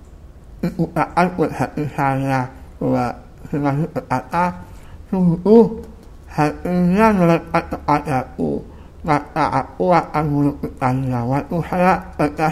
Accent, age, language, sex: American, 60-79, Indonesian, male